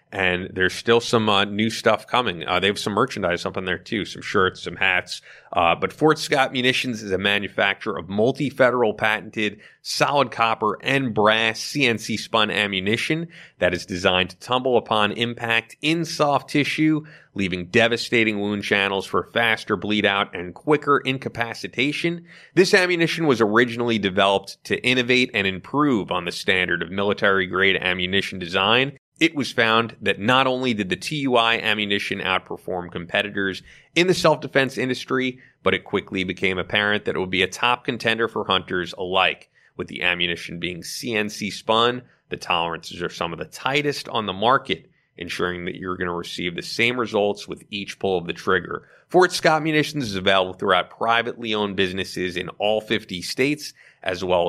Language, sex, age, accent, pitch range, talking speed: English, male, 30-49, American, 95-130 Hz, 170 wpm